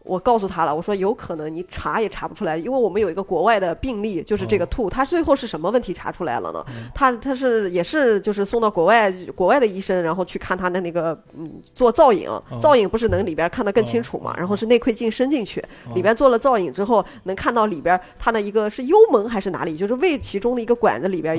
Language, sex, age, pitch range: Chinese, female, 20-39, 180-245 Hz